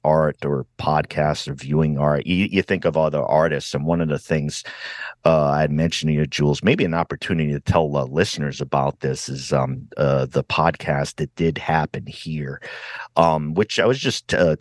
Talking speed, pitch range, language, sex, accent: 195 wpm, 75-90 Hz, English, male, American